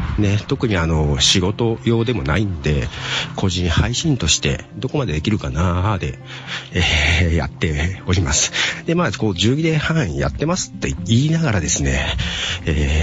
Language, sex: Japanese, male